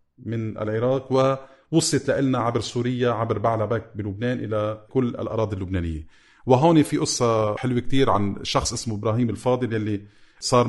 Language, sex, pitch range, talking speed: Arabic, male, 110-135 Hz, 140 wpm